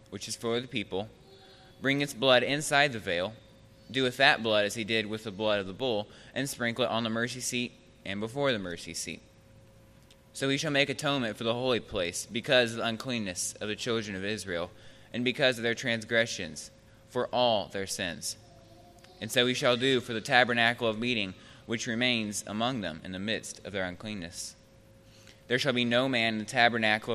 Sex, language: male, English